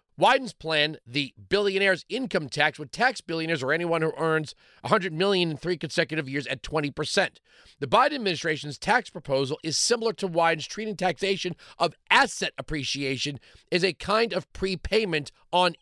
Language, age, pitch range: English, 40-59, 155-215 Hz